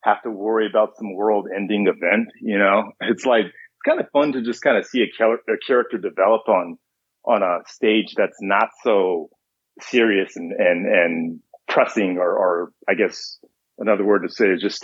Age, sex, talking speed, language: 30-49, male, 185 wpm, English